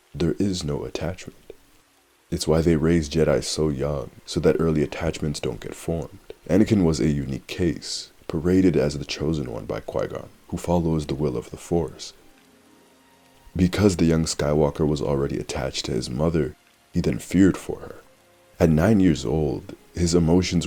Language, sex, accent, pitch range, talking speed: English, male, American, 70-85 Hz, 170 wpm